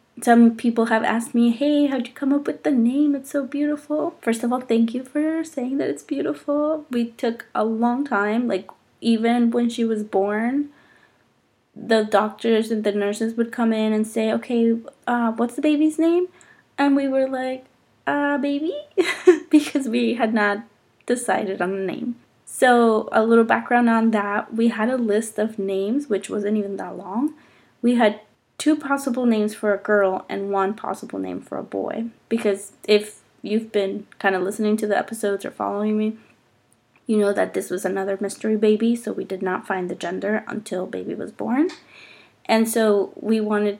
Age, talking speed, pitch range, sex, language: 20-39, 185 wpm, 205-250 Hz, female, English